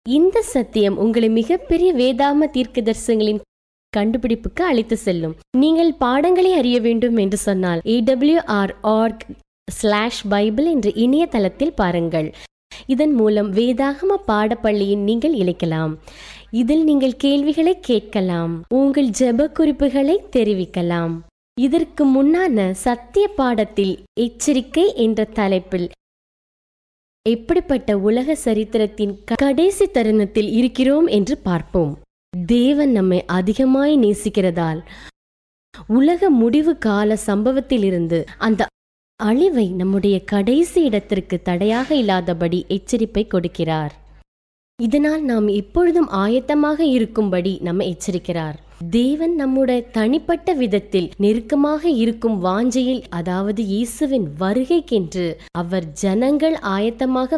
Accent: native